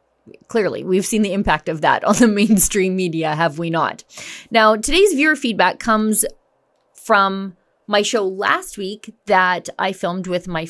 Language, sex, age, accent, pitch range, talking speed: English, female, 30-49, American, 180-220 Hz, 165 wpm